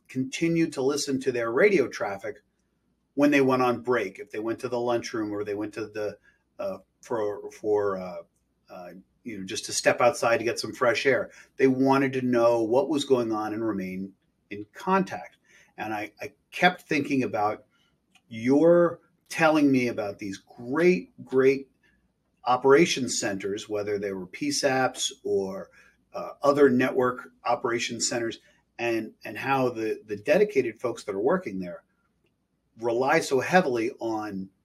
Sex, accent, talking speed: male, American, 160 wpm